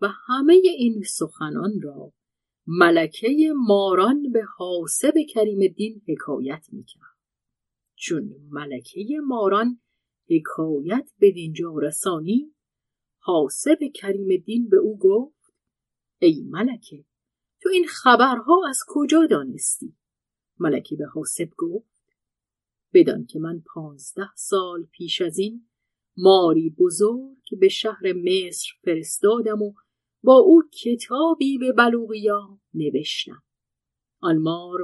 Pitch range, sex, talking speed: 175-270 Hz, female, 105 wpm